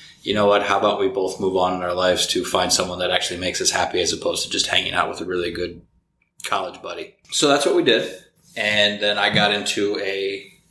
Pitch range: 95-105 Hz